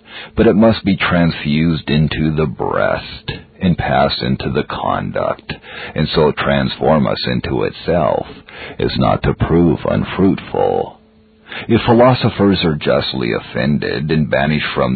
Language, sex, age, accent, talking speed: English, male, 50-69, American, 130 wpm